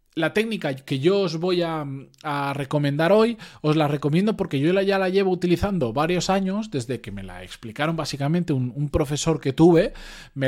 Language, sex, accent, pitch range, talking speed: Spanish, male, Spanish, 140-200 Hz, 195 wpm